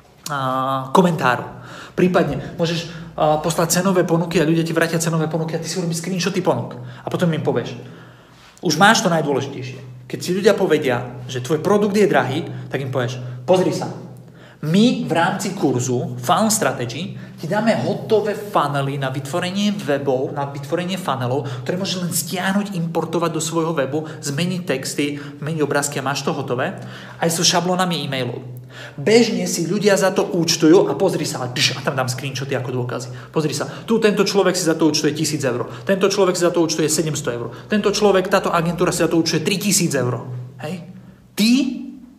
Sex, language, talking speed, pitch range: male, Slovak, 170 wpm, 140-190 Hz